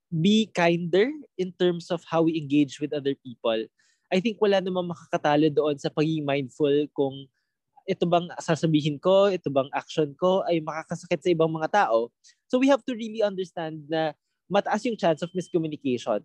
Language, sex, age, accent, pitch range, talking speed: Filipino, male, 20-39, native, 150-190 Hz, 175 wpm